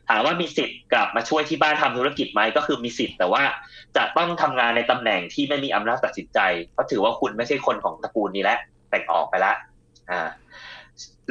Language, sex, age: Thai, male, 20-39